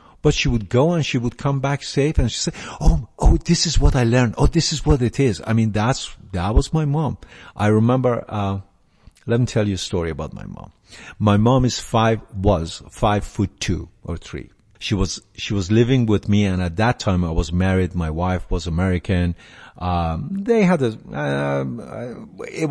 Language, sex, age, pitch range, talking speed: English, male, 50-69, 95-130 Hz, 210 wpm